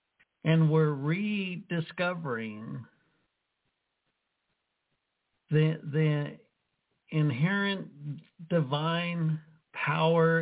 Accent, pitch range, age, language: American, 145-170 Hz, 60-79, English